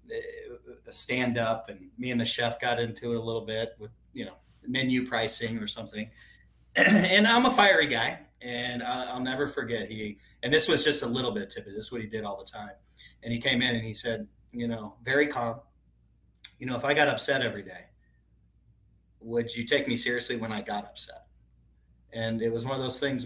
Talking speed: 210 wpm